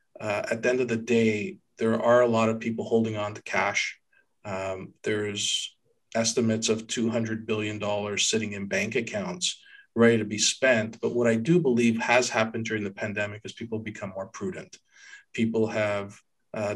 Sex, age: male, 40-59